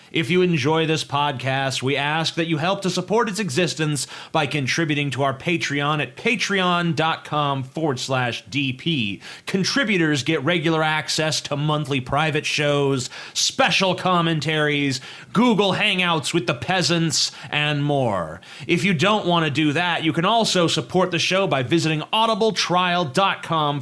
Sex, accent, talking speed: male, American, 145 wpm